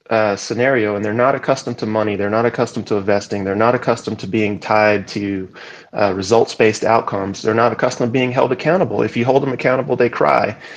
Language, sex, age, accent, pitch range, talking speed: English, male, 30-49, American, 110-130 Hz, 205 wpm